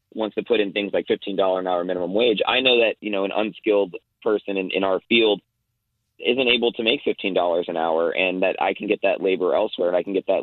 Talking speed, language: 245 wpm, English